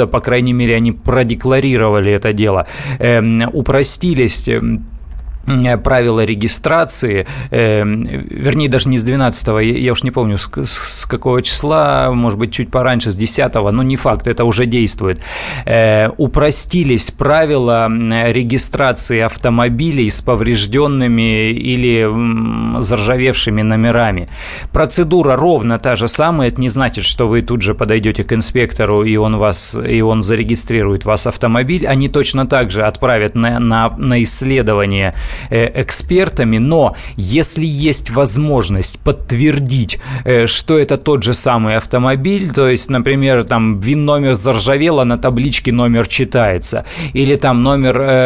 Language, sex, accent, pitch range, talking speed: Russian, male, native, 115-135 Hz, 125 wpm